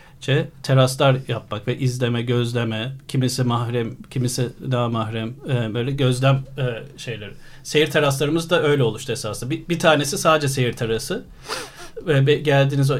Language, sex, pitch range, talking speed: Turkish, male, 120-145 Hz, 135 wpm